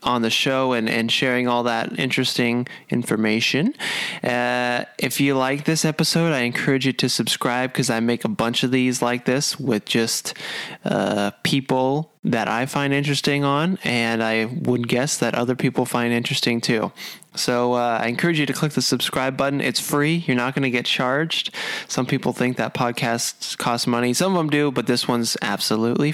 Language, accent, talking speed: English, American, 190 wpm